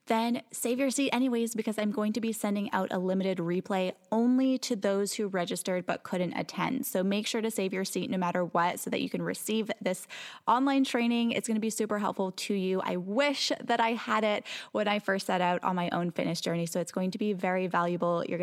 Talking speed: 240 wpm